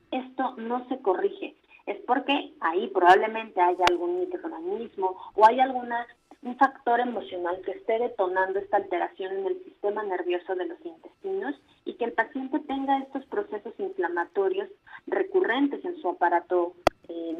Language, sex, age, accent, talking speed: Spanish, female, 30-49, Mexican, 140 wpm